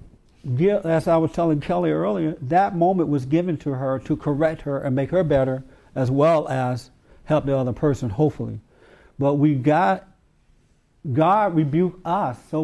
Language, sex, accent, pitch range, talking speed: English, male, American, 135-180 Hz, 160 wpm